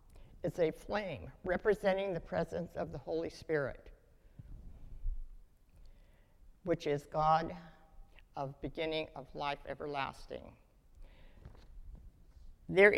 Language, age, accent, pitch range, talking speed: English, 60-79, American, 145-195 Hz, 90 wpm